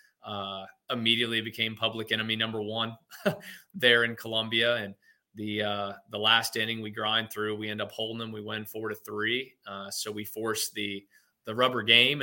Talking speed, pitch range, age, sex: 180 wpm, 105-115 Hz, 20-39, male